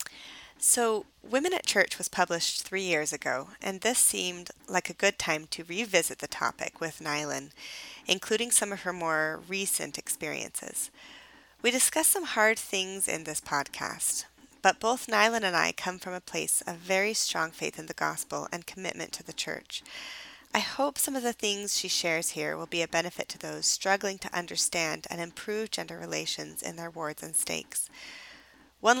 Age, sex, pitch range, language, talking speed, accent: 30-49, female, 165-210 Hz, English, 180 wpm, American